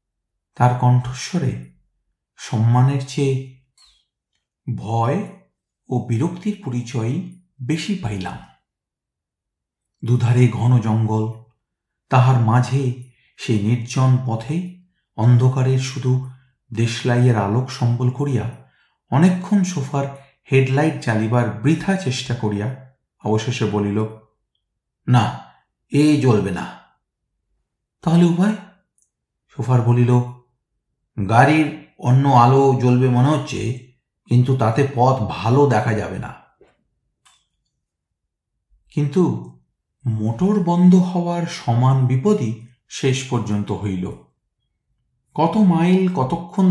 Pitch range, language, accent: 115-150 Hz, Bengali, native